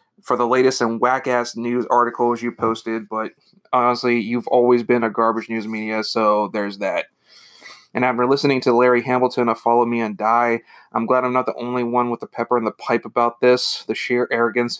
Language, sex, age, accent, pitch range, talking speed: English, male, 30-49, American, 110-125 Hz, 205 wpm